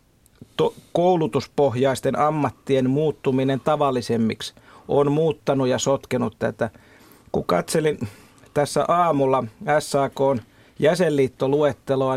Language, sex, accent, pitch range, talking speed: Finnish, male, native, 135-150 Hz, 80 wpm